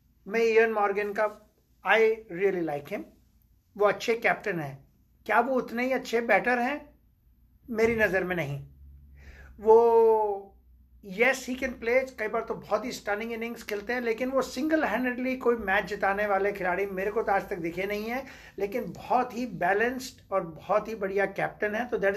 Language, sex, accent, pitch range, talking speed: Hindi, male, native, 195-230 Hz, 180 wpm